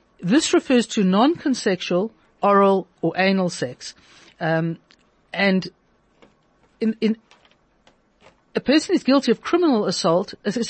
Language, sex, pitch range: English, female, 175-225 Hz